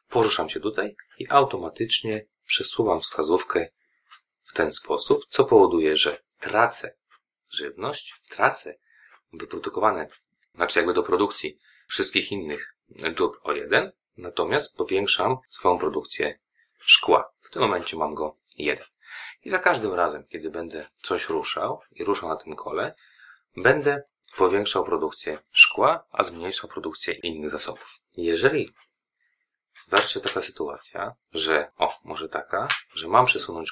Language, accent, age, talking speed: Polish, native, 30-49, 125 wpm